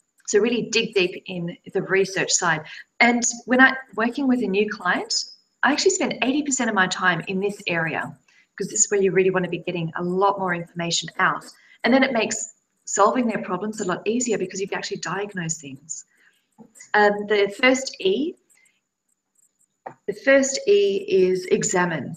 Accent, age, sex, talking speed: Australian, 30-49, female, 180 wpm